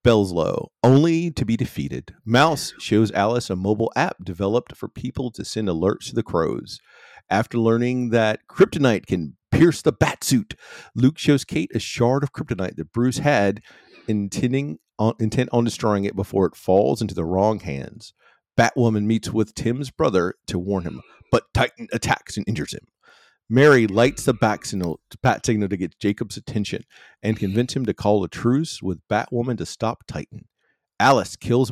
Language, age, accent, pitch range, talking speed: English, 40-59, American, 105-130 Hz, 170 wpm